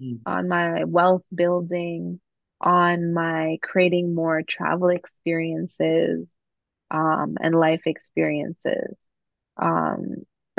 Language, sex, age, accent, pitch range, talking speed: English, female, 20-39, American, 165-215 Hz, 85 wpm